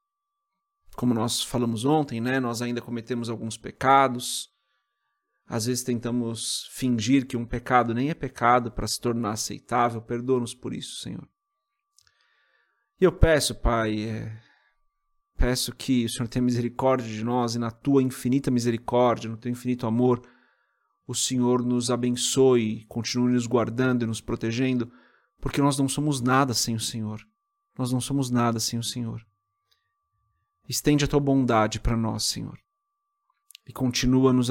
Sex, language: male, Portuguese